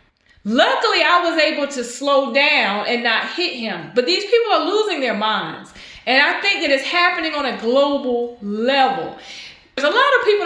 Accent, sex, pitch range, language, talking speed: American, female, 250-335 Hz, English, 190 wpm